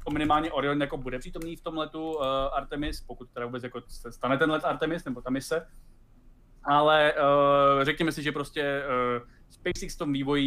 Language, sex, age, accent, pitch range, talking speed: Czech, male, 20-39, native, 130-155 Hz, 170 wpm